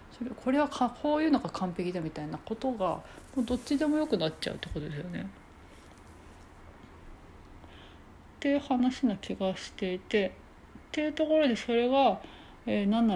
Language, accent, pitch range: Japanese, native, 165-240 Hz